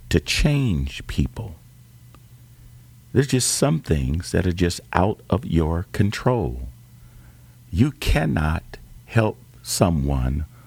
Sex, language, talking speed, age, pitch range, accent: male, English, 95 wpm, 50-69, 80-120 Hz, American